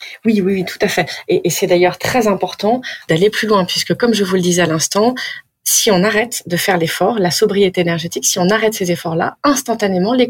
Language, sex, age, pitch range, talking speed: French, female, 30-49, 165-200 Hz, 225 wpm